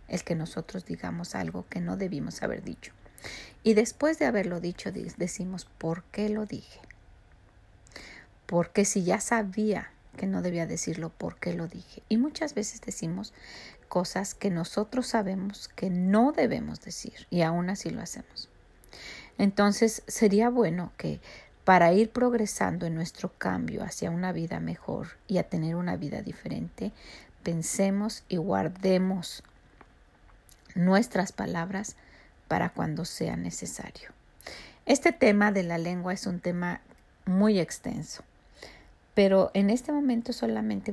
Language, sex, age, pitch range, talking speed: Spanish, female, 40-59, 175-220 Hz, 135 wpm